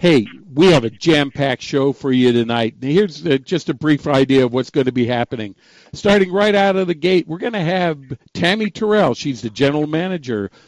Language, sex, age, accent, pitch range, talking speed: English, male, 50-69, American, 130-175 Hz, 215 wpm